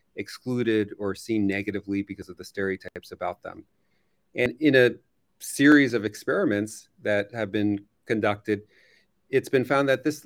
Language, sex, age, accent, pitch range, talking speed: English, male, 40-59, American, 100-125 Hz, 145 wpm